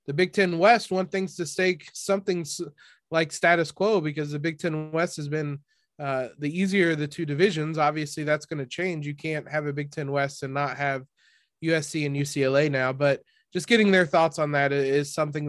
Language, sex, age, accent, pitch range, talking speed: English, male, 20-39, American, 140-170 Hz, 205 wpm